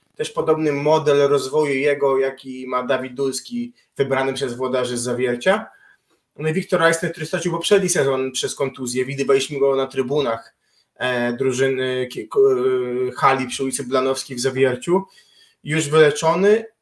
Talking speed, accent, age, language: 130 wpm, native, 20-39, Polish